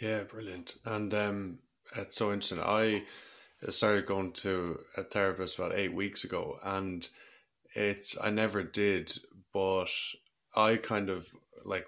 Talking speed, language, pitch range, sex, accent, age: 135 wpm, English, 90-100 Hz, male, Irish, 20-39